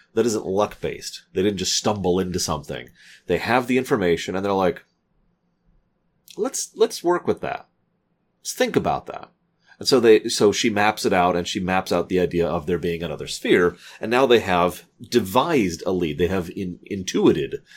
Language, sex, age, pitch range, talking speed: English, male, 30-49, 90-135 Hz, 190 wpm